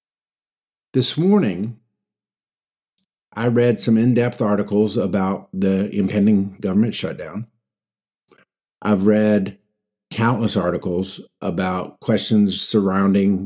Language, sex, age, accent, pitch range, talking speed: English, male, 50-69, American, 100-120 Hz, 85 wpm